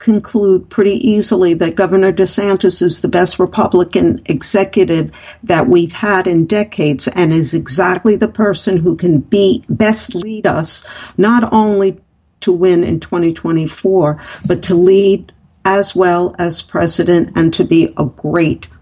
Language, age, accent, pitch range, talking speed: English, 50-69, American, 165-200 Hz, 145 wpm